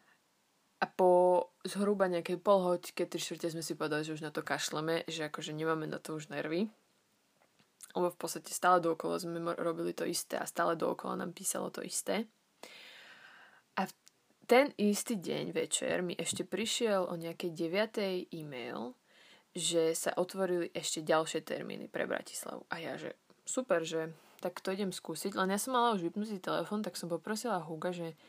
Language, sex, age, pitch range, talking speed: Slovak, female, 20-39, 170-210 Hz, 170 wpm